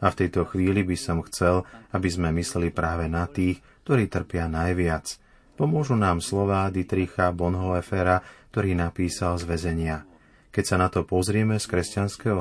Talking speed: 155 wpm